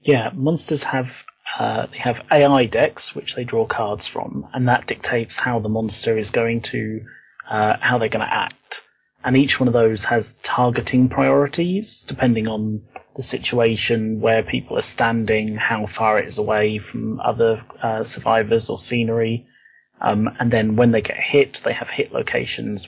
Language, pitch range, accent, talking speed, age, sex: English, 110-125 Hz, British, 170 wpm, 30-49, male